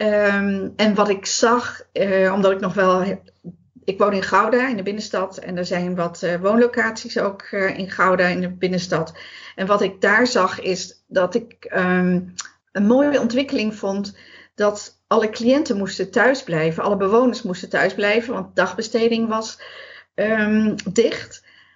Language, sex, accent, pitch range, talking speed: Dutch, female, Dutch, 185-230 Hz, 150 wpm